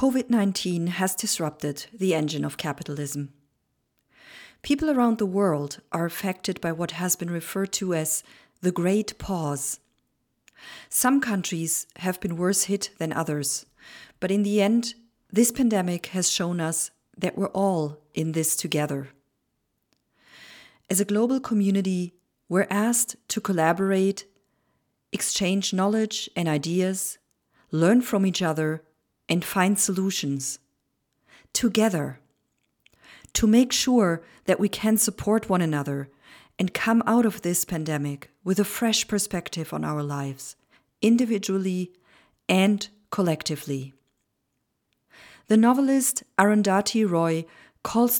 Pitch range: 160-210 Hz